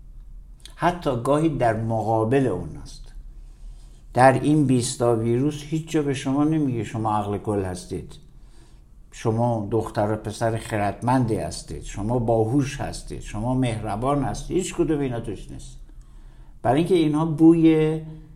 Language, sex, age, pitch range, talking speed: Persian, male, 60-79, 105-135 Hz, 125 wpm